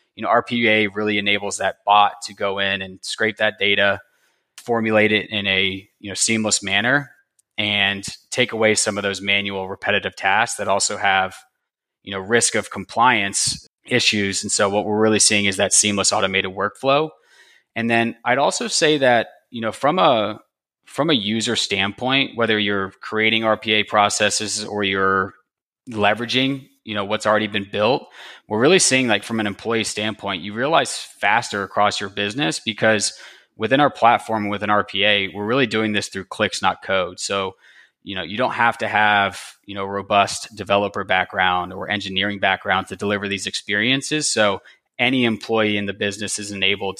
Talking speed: 175 wpm